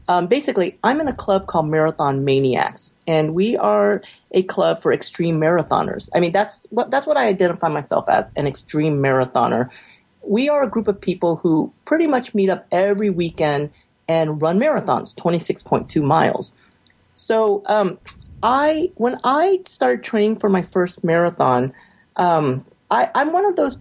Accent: American